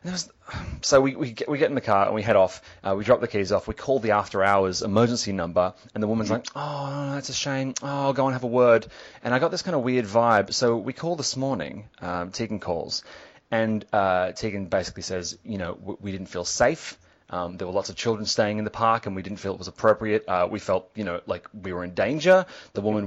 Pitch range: 100-130 Hz